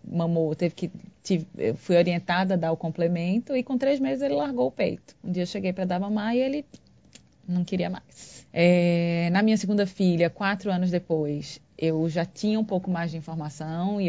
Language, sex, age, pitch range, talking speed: Portuguese, female, 20-39, 165-190 Hz, 205 wpm